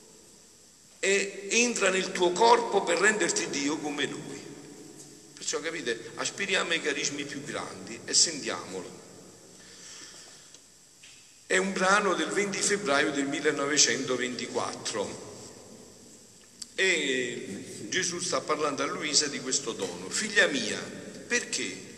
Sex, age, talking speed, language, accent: male, 50-69, 105 wpm, Italian, native